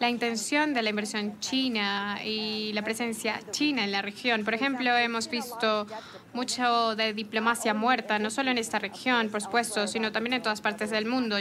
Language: English